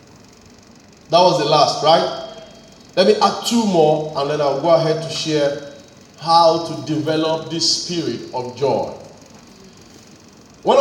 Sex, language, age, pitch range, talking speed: male, English, 40-59, 200-260 Hz, 140 wpm